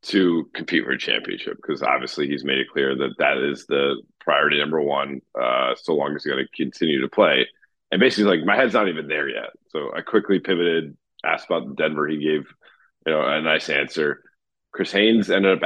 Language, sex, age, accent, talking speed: English, male, 30-49, American, 210 wpm